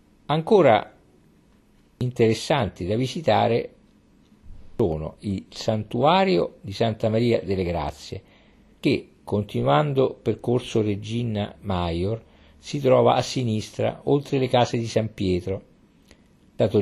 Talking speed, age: 100 wpm, 50-69